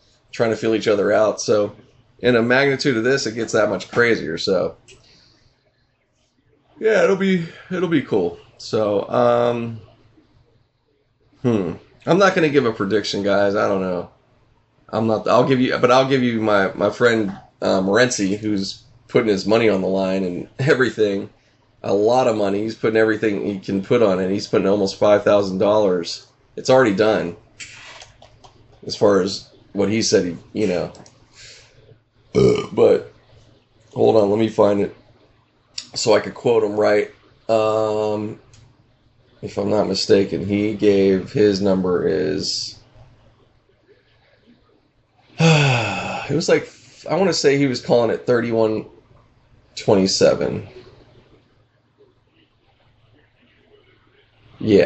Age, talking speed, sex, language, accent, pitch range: 20-39, 135 wpm, male, English, American, 105-125 Hz